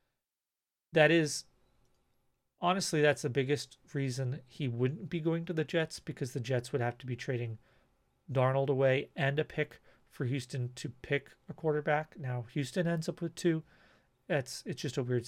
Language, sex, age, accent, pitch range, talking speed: English, male, 40-59, American, 120-150 Hz, 175 wpm